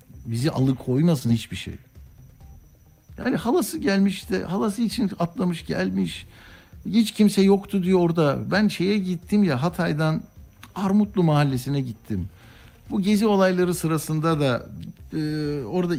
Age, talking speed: 60-79, 120 wpm